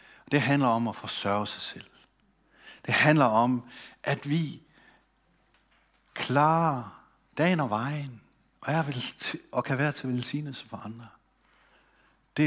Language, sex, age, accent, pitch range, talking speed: Danish, male, 60-79, native, 110-150 Hz, 130 wpm